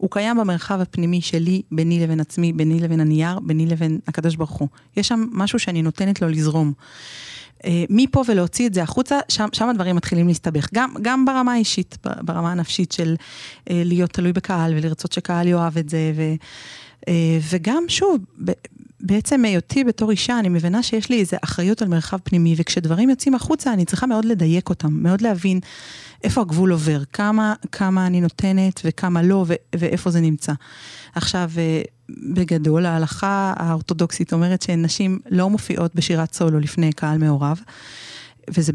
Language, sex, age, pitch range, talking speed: Hebrew, female, 30-49, 165-205 Hz, 155 wpm